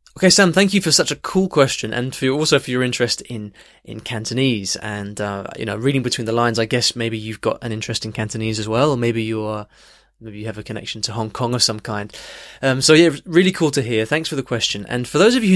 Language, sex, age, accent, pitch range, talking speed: English, male, 20-39, British, 110-135 Hz, 260 wpm